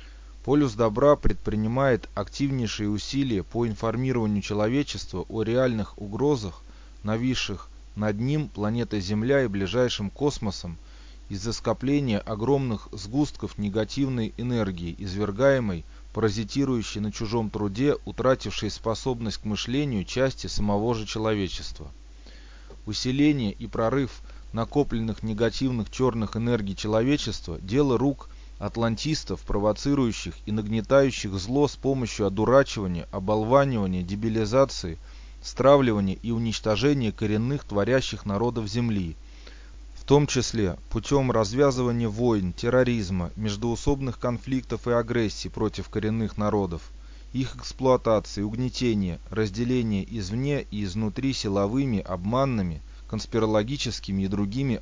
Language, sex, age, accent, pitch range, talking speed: Russian, male, 20-39, native, 100-125 Hz, 100 wpm